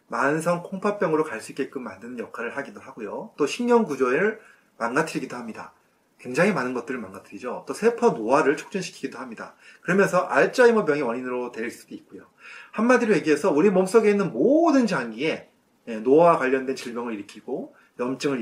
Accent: native